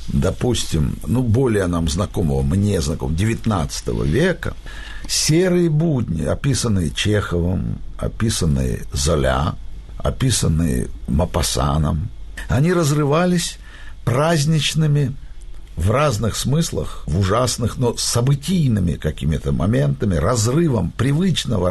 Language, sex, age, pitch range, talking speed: Russian, male, 60-79, 95-140 Hz, 85 wpm